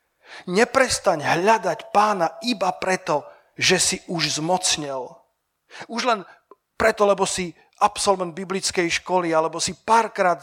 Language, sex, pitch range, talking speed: Slovak, male, 160-205 Hz, 115 wpm